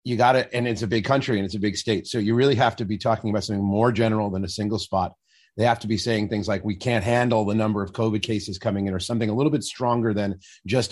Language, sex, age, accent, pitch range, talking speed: English, male, 30-49, American, 105-130 Hz, 290 wpm